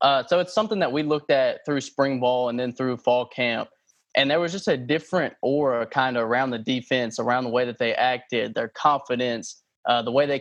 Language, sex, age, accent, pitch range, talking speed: English, male, 20-39, American, 120-140 Hz, 230 wpm